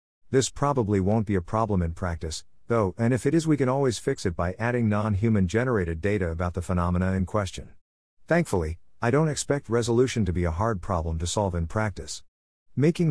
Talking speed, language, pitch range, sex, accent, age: 200 wpm, English, 90-115 Hz, male, American, 50-69